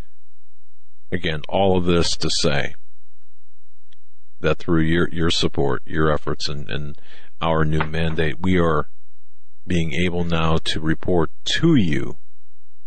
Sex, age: male, 50-69